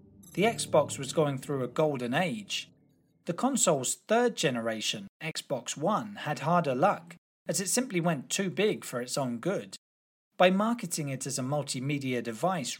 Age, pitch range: 30-49, 125-185 Hz